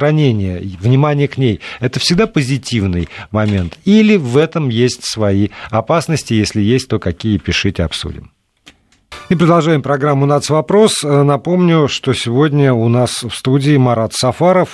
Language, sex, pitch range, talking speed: Russian, male, 110-150 Hz, 130 wpm